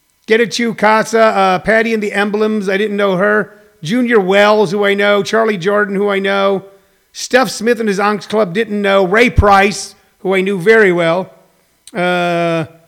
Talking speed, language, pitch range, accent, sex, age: 180 wpm, English, 180-220 Hz, American, male, 50-69